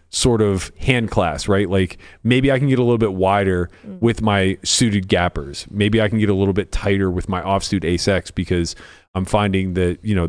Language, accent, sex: English, American, male